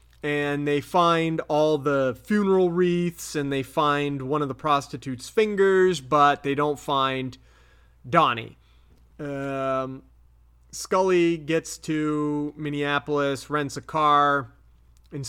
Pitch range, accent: 130-160 Hz, American